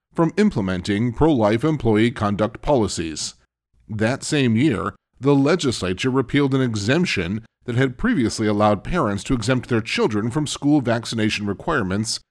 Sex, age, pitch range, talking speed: male, 40-59, 105-135 Hz, 130 wpm